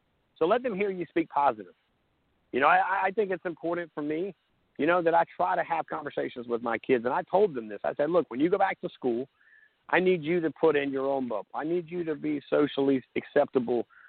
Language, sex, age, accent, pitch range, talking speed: English, male, 50-69, American, 135-170 Hz, 245 wpm